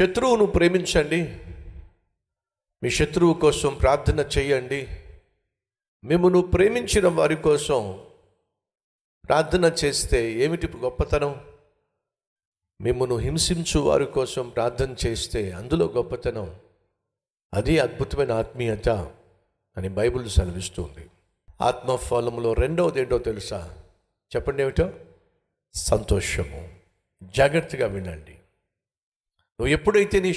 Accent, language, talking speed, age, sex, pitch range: native, Telugu, 85 wpm, 50-69, male, 95-145 Hz